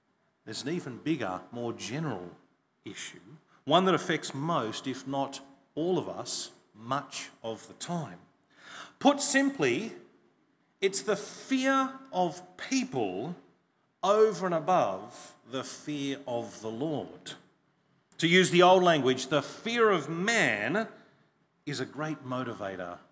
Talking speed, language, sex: 125 wpm, English, male